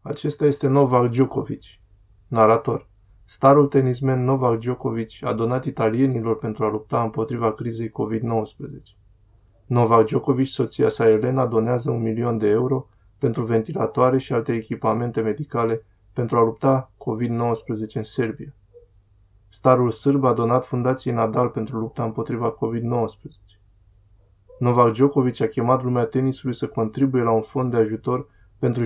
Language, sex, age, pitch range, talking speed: Romanian, male, 20-39, 110-130 Hz, 135 wpm